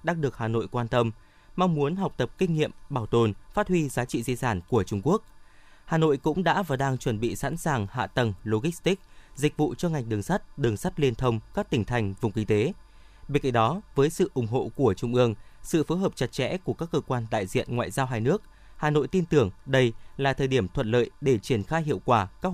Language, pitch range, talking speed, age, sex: Vietnamese, 115-150 Hz, 250 wpm, 20-39, male